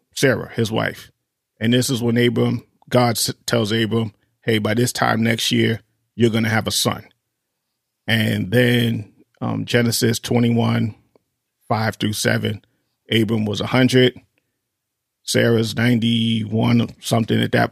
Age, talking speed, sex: 40-59, 130 wpm, male